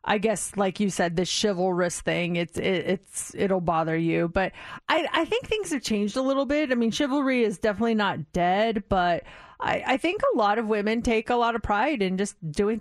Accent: American